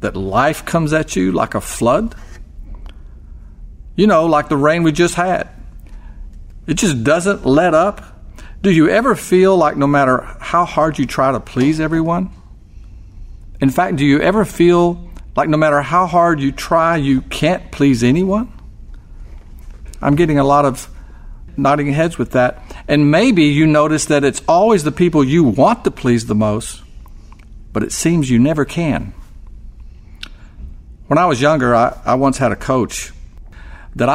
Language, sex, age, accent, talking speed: English, male, 50-69, American, 165 wpm